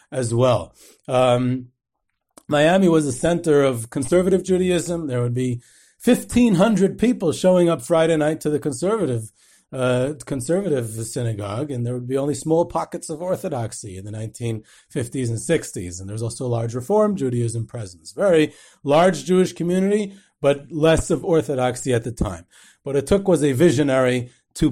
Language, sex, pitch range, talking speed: English, male, 120-160 Hz, 160 wpm